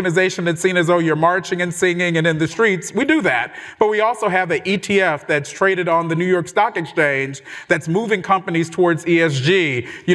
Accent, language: American, English